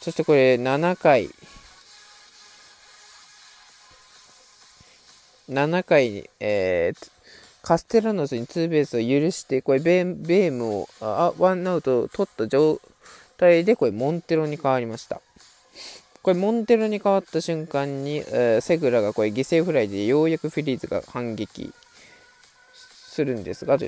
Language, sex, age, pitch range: Japanese, male, 20-39, 130-220 Hz